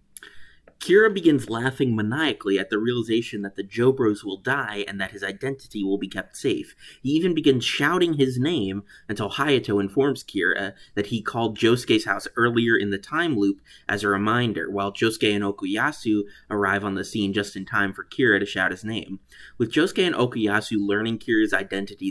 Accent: American